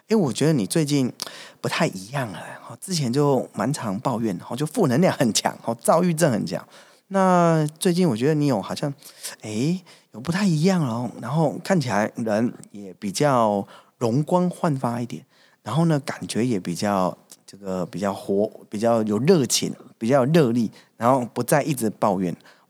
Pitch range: 110-145 Hz